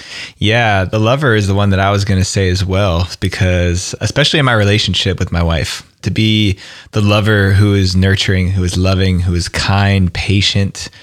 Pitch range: 90-110 Hz